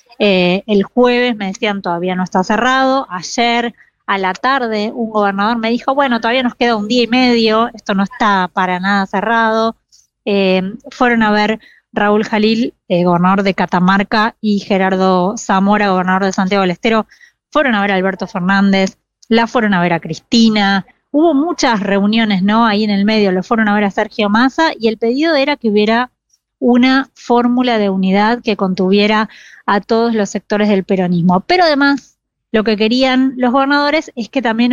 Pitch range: 200-245 Hz